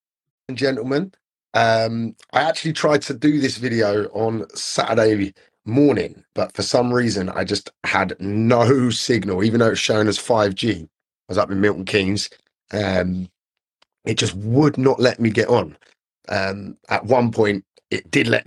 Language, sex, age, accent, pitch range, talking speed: English, male, 30-49, British, 100-135 Hz, 160 wpm